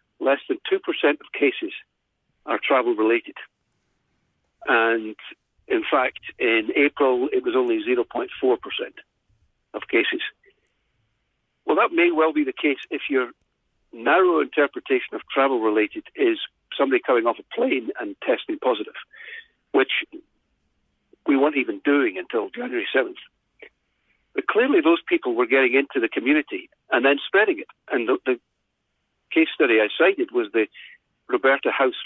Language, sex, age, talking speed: English, male, 60-79, 140 wpm